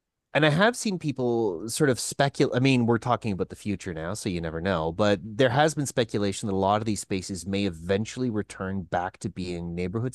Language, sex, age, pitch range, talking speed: English, male, 30-49, 95-130 Hz, 225 wpm